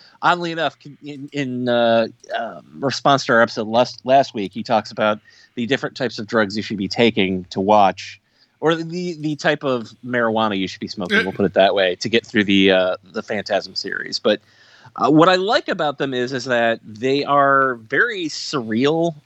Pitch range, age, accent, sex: 110-145 Hz, 30-49, American, male